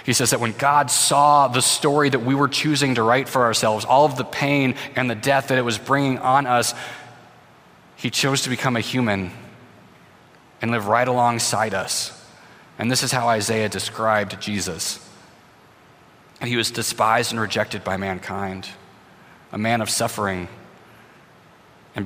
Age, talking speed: 30-49, 160 wpm